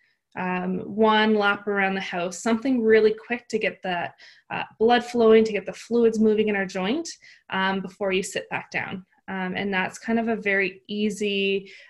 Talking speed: 190 wpm